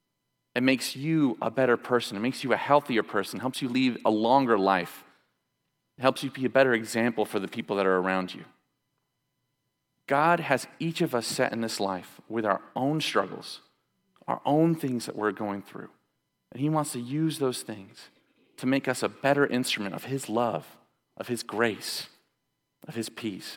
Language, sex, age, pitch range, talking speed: English, male, 30-49, 110-140 Hz, 190 wpm